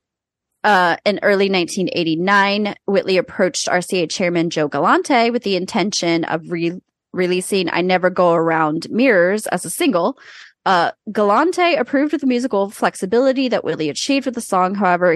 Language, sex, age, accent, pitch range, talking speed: English, female, 20-39, American, 170-220 Hz, 145 wpm